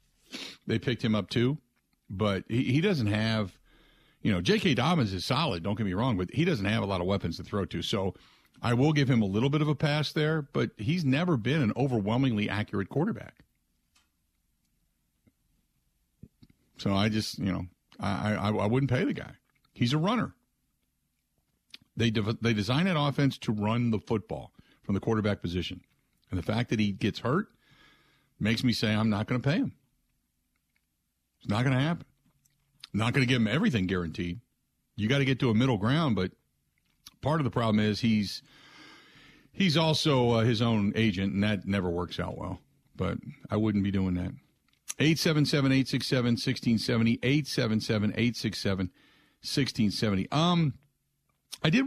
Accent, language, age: American, English, 50-69